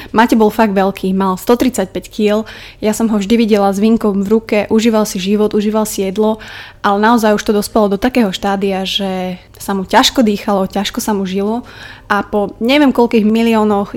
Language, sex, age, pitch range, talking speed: Slovak, female, 20-39, 200-225 Hz, 190 wpm